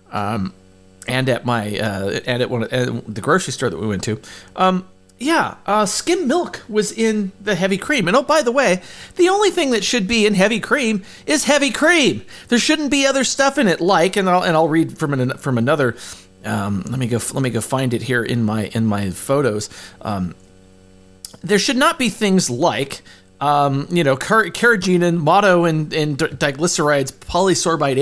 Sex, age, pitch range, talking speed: male, 40-59, 115-190 Hz, 195 wpm